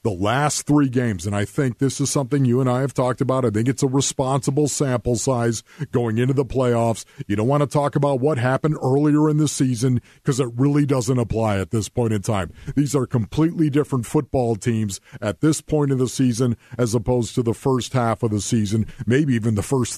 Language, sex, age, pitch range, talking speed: English, male, 50-69, 115-145 Hz, 220 wpm